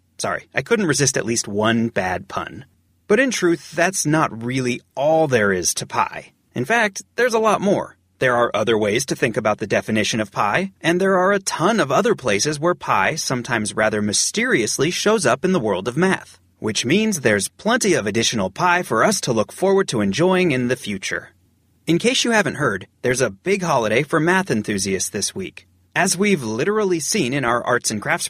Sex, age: male, 30-49